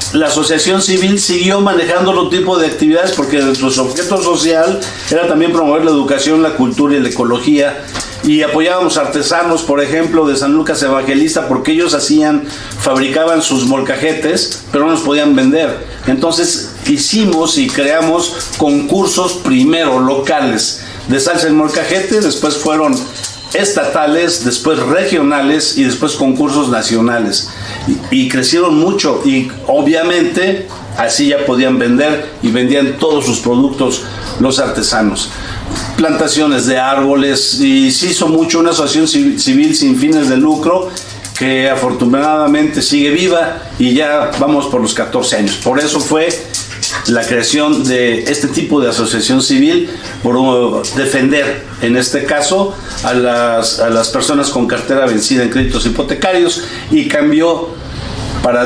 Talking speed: 140 wpm